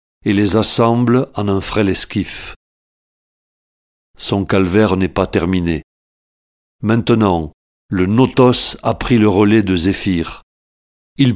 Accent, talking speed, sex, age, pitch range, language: French, 115 wpm, male, 50-69, 95-115 Hz, French